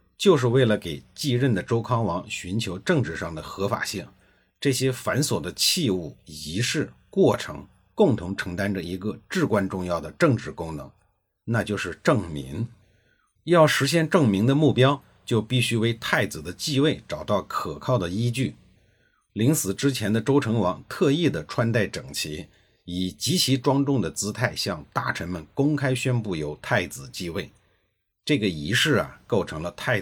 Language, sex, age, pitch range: Chinese, male, 50-69, 95-140 Hz